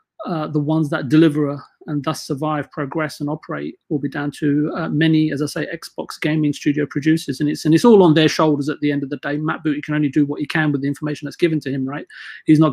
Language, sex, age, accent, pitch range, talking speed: English, male, 30-49, British, 145-170 Hz, 265 wpm